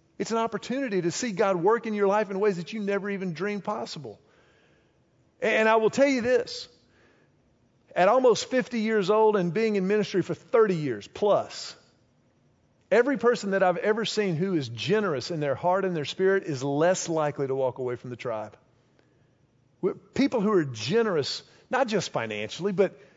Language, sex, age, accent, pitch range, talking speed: English, male, 50-69, American, 160-220 Hz, 180 wpm